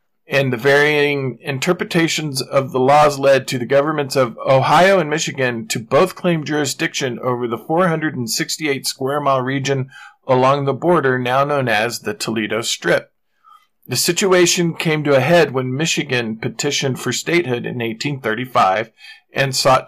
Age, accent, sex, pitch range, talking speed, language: 40-59, American, male, 130-165 Hz, 140 wpm, English